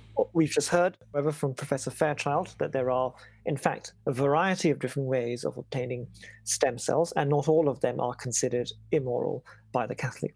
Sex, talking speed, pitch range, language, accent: male, 185 wpm, 125-155 Hz, English, British